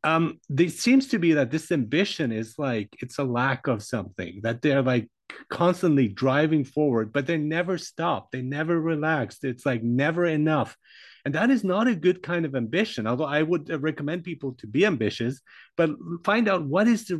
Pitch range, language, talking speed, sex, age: 130-175 Hz, English, 190 wpm, male, 40-59